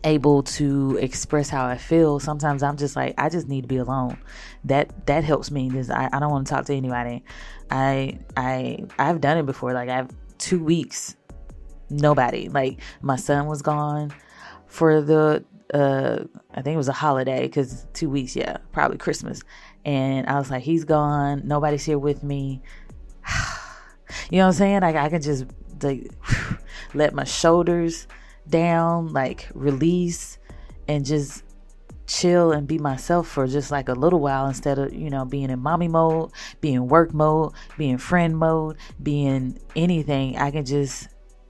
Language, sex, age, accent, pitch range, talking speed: English, female, 20-39, American, 130-160 Hz, 170 wpm